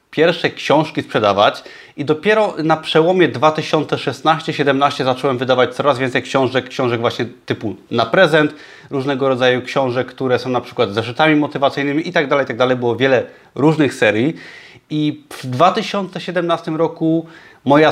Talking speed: 130 wpm